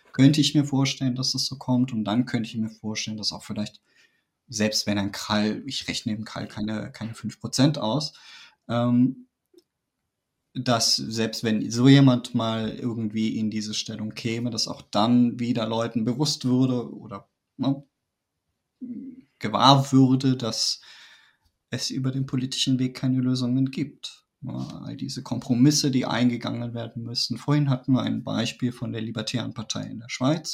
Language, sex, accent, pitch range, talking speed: German, male, German, 115-140 Hz, 155 wpm